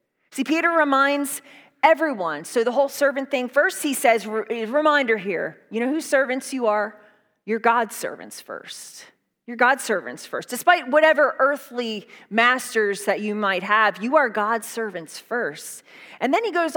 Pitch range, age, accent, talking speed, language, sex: 220-305 Hz, 30-49, American, 160 wpm, English, female